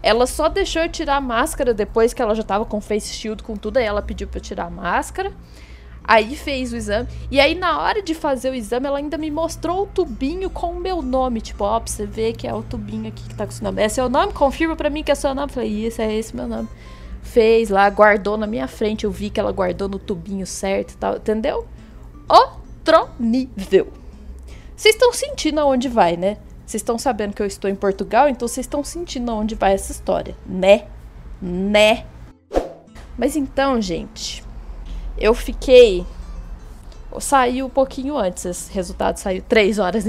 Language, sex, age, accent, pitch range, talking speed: Portuguese, female, 20-39, Brazilian, 200-280 Hz, 210 wpm